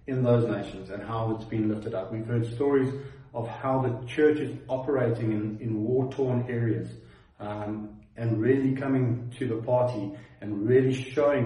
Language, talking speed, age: English, 170 wpm, 30-49